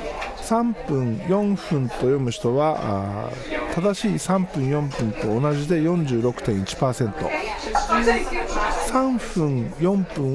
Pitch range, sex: 120-195 Hz, male